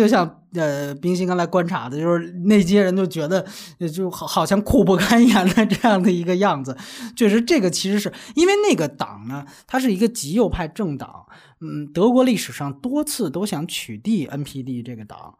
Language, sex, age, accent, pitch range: Chinese, male, 20-39, native, 140-205 Hz